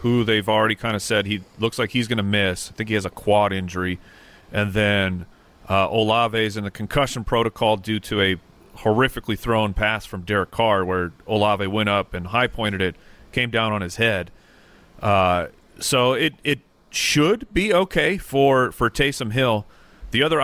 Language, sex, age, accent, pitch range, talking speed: English, male, 40-59, American, 100-125 Hz, 180 wpm